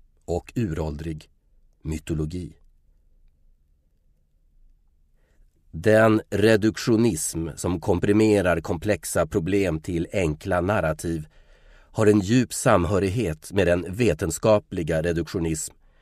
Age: 30-49